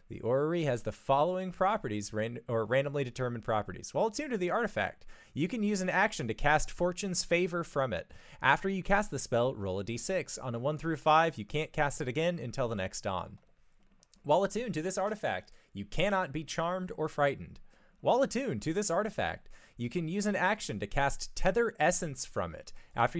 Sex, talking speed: male, 195 wpm